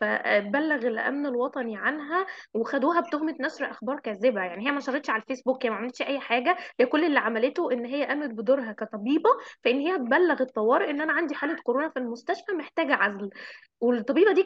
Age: 20-39